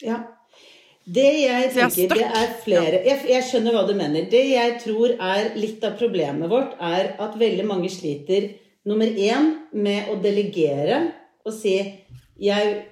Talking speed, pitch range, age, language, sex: 165 wpm, 180-230 Hz, 40-59, English, female